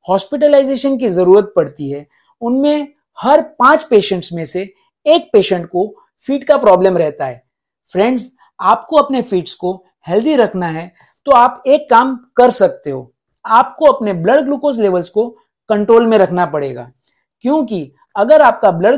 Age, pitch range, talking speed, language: 50-69, 185-270 Hz, 150 wpm, Hindi